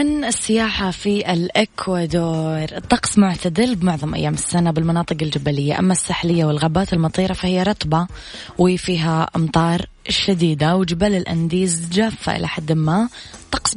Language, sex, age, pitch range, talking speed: Arabic, female, 20-39, 155-185 Hz, 120 wpm